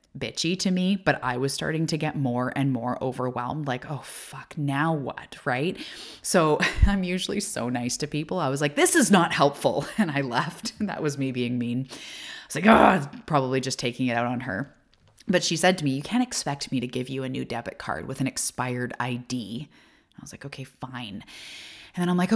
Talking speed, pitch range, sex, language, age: 220 wpm, 130-165 Hz, female, English, 20-39